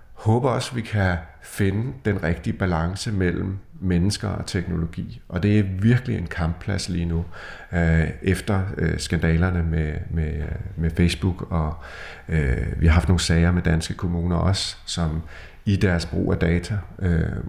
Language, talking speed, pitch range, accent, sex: Danish, 160 wpm, 85-105 Hz, native, male